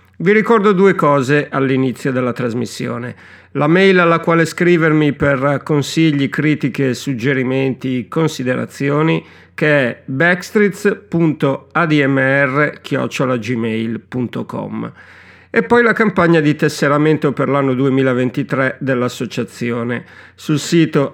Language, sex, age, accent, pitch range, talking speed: Italian, male, 50-69, native, 130-165 Hz, 90 wpm